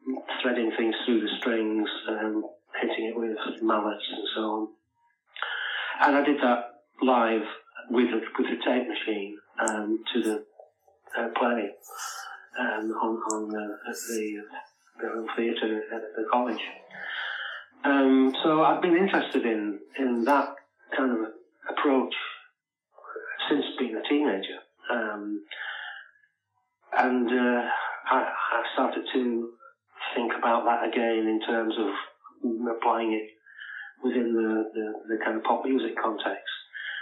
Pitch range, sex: 110-130 Hz, male